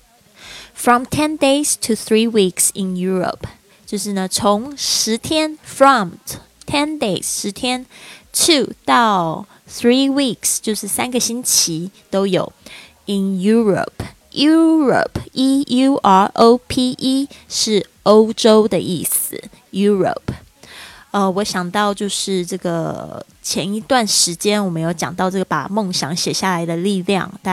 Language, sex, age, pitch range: Chinese, female, 20-39, 180-220 Hz